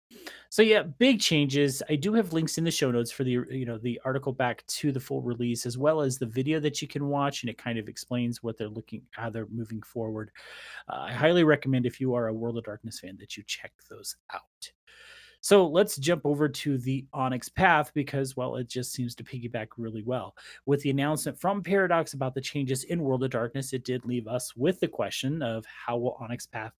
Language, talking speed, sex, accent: English, 230 wpm, male, American